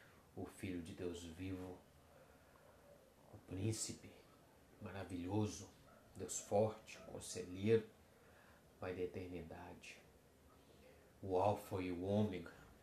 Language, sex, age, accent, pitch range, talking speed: Portuguese, male, 30-49, Brazilian, 90-110 Hz, 90 wpm